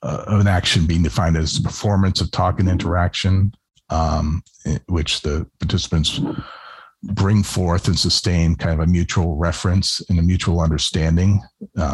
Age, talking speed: 50-69, 145 wpm